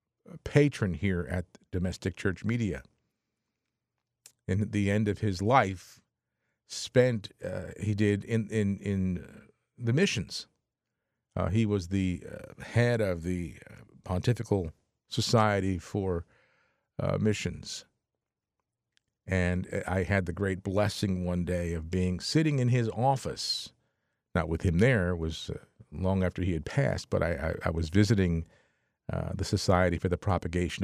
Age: 50-69